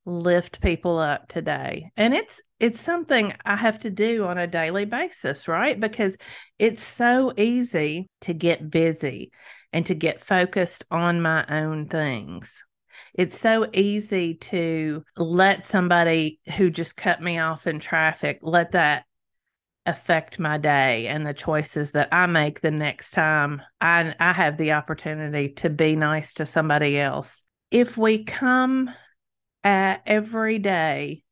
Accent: American